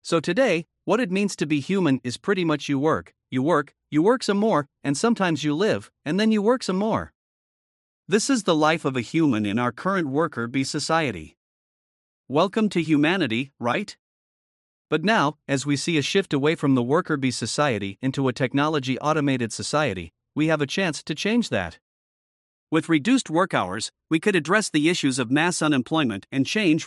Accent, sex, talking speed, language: American, male, 190 wpm, English